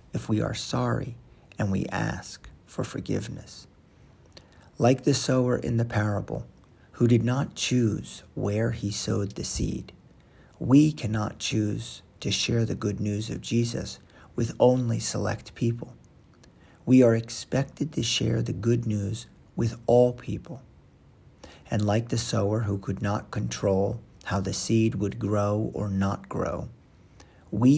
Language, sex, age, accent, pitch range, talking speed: English, male, 50-69, American, 100-120 Hz, 145 wpm